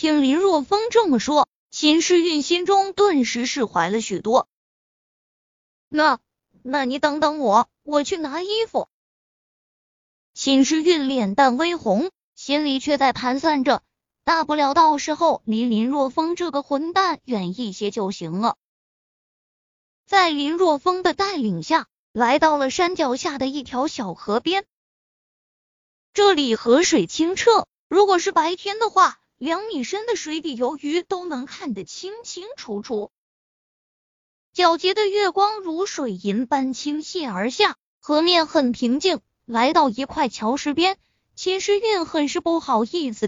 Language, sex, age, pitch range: Chinese, female, 20-39, 245-350 Hz